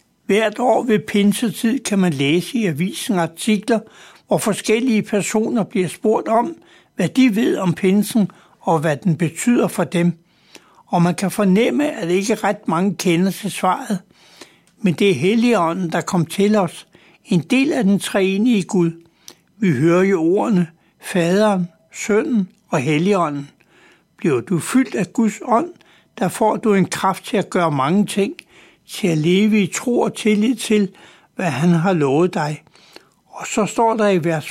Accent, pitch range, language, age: native, 175-215 Hz, Danish, 60-79